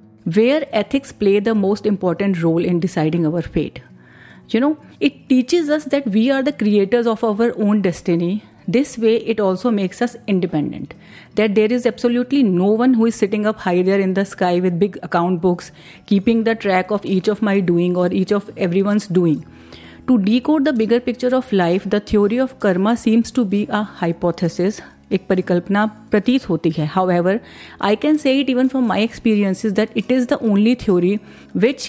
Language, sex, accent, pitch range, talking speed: Hindi, female, native, 185-235 Hz, 190 wpm